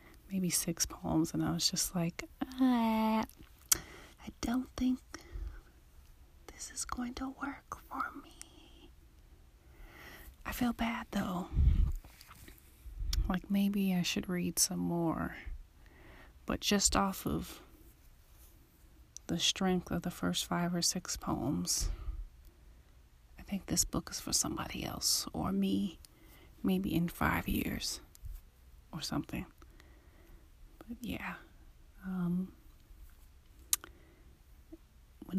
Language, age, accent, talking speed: English, 30-49, American, 105 wpm